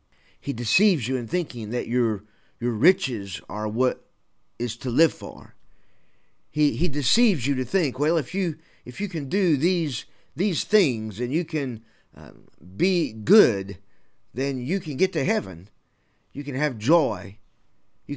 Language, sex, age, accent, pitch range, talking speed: English, male, 50-69, American, 115-165 Hz, 160 wpm